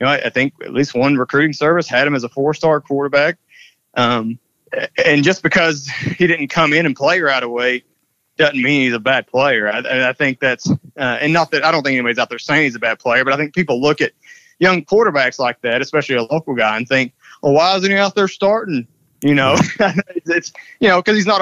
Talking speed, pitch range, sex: 240 wpm, 130-160 Hz, male